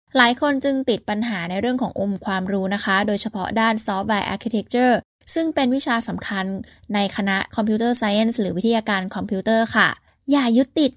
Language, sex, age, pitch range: Thai, female, 10-29, 200-255 Hz